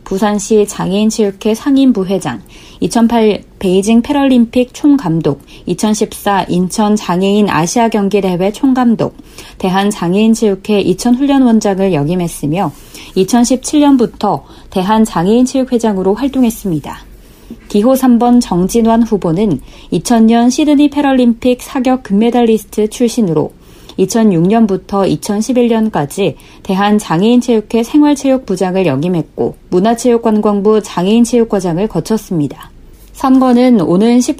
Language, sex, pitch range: Korean, female, 185-235 Hz